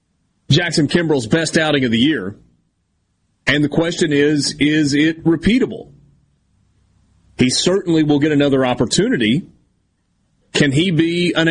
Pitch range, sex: 120-155 Hz, male